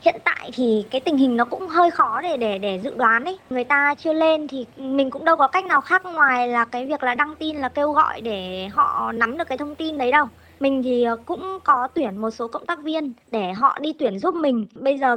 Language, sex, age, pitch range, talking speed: Vietnamese, male, 20-39, 230-300 Hz, 255 wpm